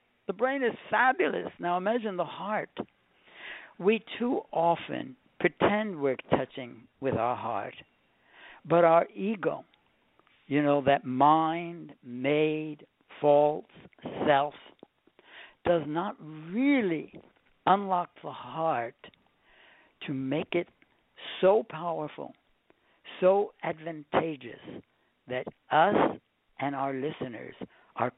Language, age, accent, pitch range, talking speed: English, 60-79, American, 140-175 Hz, 100 wpm